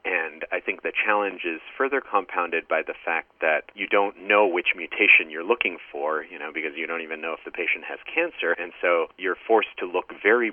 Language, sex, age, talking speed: English, male, 40-59, 220 wpm